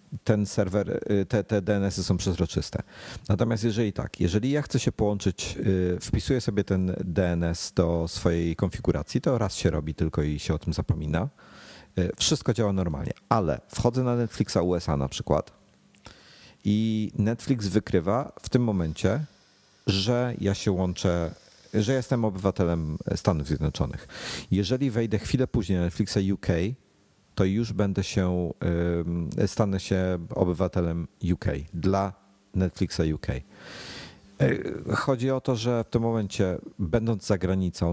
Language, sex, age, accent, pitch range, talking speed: Polish, male, 40-59, native, 85-105 Hz, 135 wpm